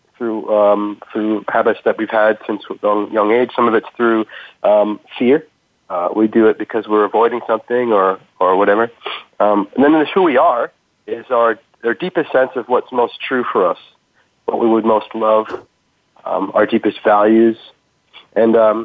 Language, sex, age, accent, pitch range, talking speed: English, male, 40-59, American, 105-120 Hz, 180 wpm